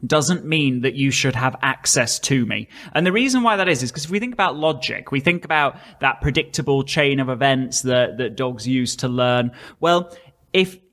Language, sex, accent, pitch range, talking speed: English, male, British, 130-175 Hz, 210 wpm